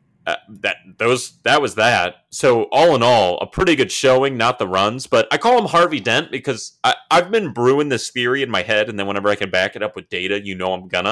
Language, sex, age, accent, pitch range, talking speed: English, male, 30-49, American, 110-170 Hz, 250 wpm